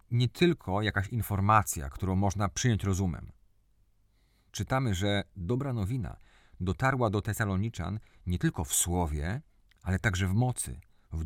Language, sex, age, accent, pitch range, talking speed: Polish, male, 40-59, native, 95-120 Hz, 130 wpm